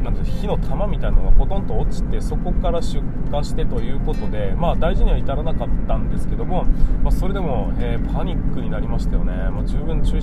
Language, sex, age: Japanese, male, 20-39